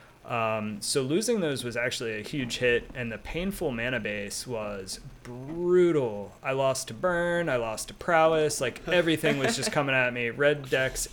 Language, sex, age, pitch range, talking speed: English, male, 30-49, 115-140 Hz, 180 wpm